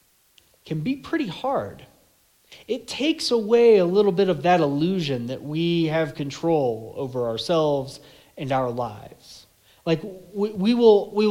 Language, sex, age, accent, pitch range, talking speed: English, male, 30-49, American, 145-190 Hz, 135 wpm